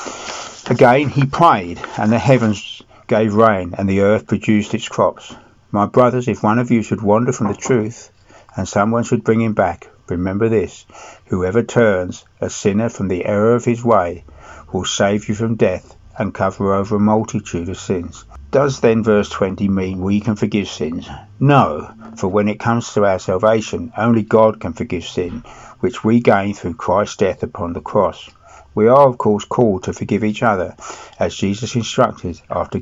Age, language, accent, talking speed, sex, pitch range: 60-79, English, British, 180 wpm, male, 100-115 Hz